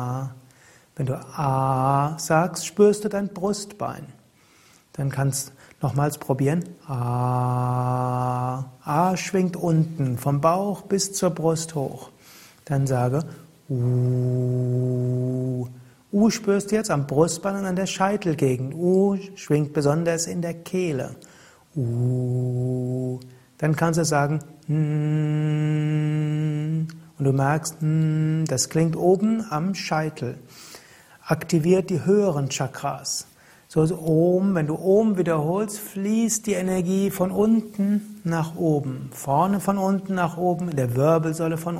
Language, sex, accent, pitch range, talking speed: German, male, German, 135-185 Hz, 120 wpm